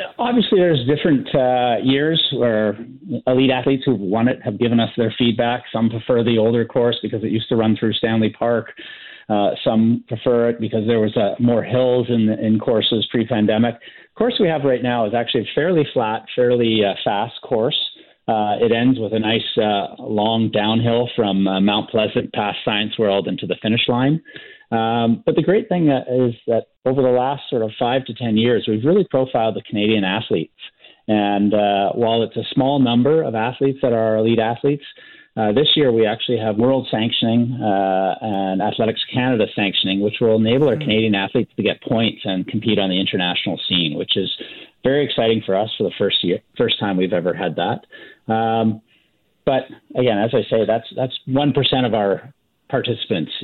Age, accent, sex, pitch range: 30-49, American, male, 110-125 Hz